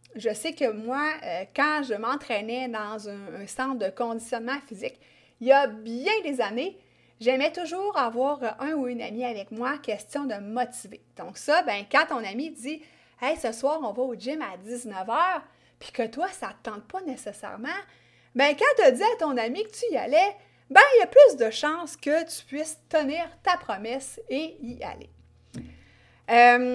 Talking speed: 195 wpm